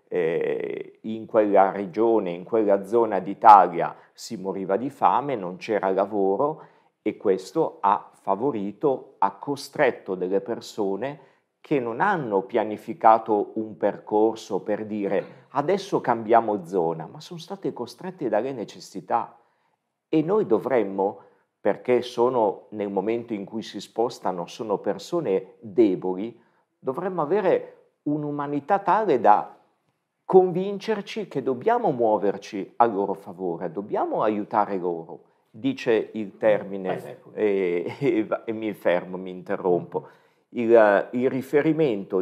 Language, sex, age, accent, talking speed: Italian, male, 50-69, native, 115 wpm